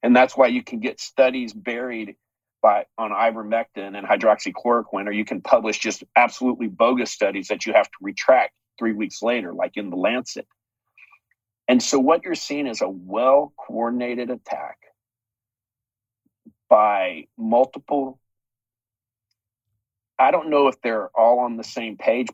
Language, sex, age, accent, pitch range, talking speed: English, male, 40-59, American, 110-130 Hz, 145 wpm